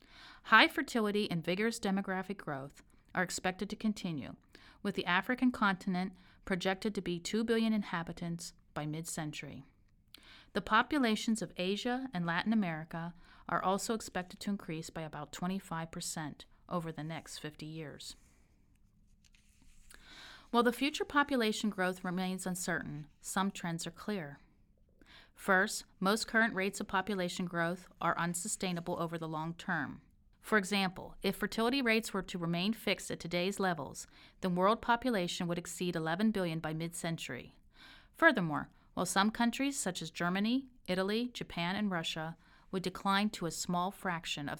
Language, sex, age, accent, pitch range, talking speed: English, female, 40-59, American, 170-210 Hz, 140 wpm